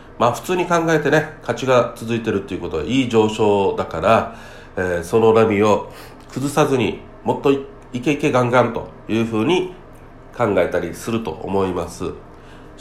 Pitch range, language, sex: 105-140 Hz, Japanese, male